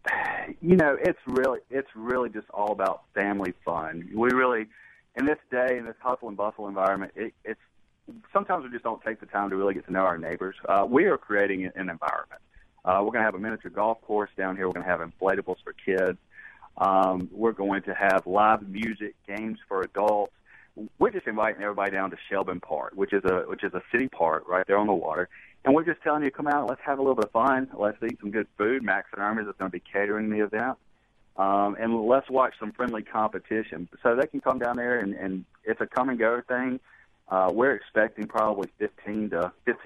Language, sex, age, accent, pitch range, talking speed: English, male, 40-59, American, 95-115 Hz, 225 wpm